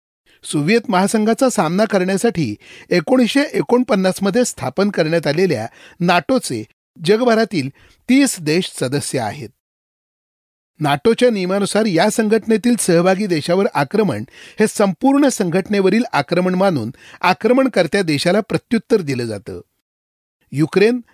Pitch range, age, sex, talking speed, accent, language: 155-225 Hz, 40-59, male, 95 wpm, native, Marathi